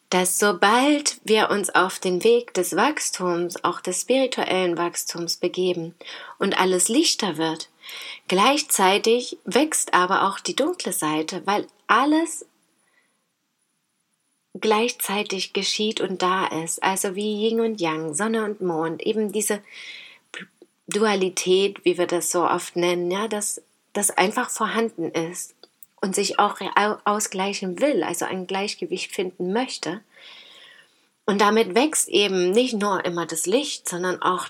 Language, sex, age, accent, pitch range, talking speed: German, female, 30-49, German, 175-225 Hz, 130 wpm